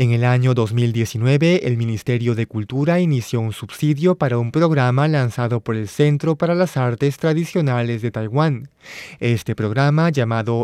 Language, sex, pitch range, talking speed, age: Spanish, male, 115-150 Hz, 150 wpm, 20-39